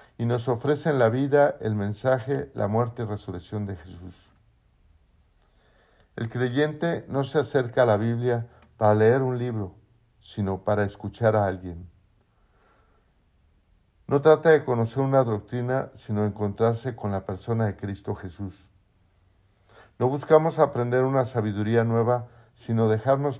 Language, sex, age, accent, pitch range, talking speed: Spanish, male, 50-69, Mexican, 100-130 Hz, 135 wpm